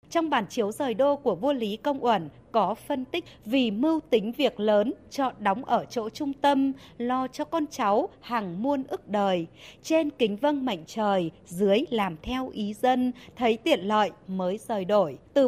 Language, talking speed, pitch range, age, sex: Vietnamese, 190 wpm, 180-255 Hz, 20-39, female